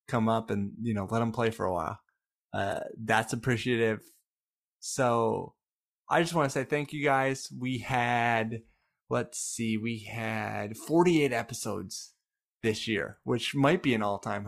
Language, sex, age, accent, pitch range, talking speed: English, male, 20-39, American, 105-135 Hz, 160 wpm